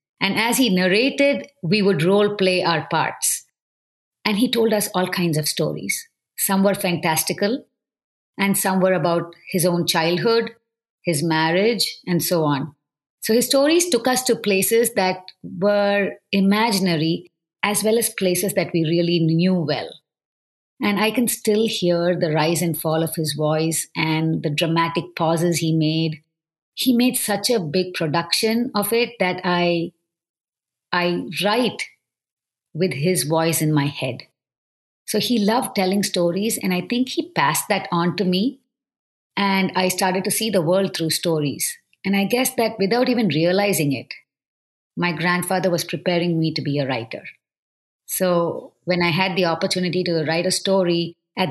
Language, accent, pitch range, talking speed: English, Indian, 165-200 Hz, 160 wpm